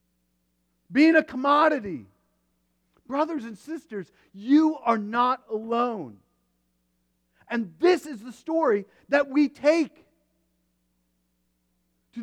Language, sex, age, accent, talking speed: English, male, 40-59, American, 95 wpm